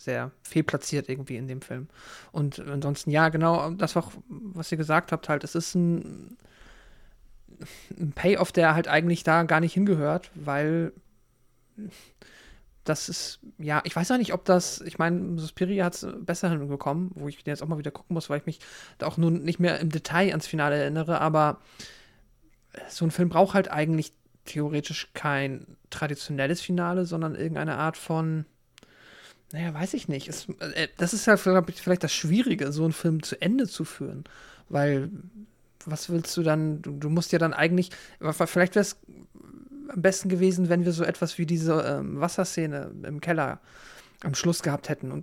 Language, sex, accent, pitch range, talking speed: German, male, German, 150-180 Hz, 180 wpm